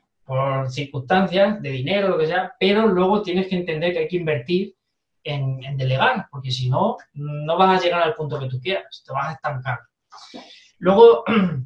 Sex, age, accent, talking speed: male, 20-39, Spanish, 185 wpm